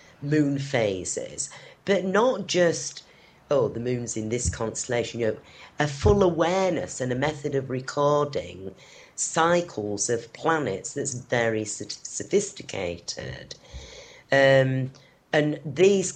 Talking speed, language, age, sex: 110 wpm, English, 40-59, female